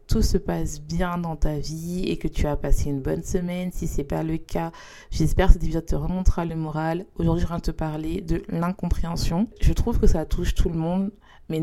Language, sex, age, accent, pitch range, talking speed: French, female, 20-39, French, 155-185 Hz, 235 wpm